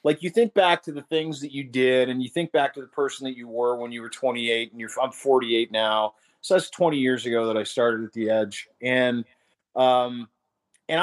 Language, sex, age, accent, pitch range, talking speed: English, male, 30-49, American, 120-145 Hz, 235 wpm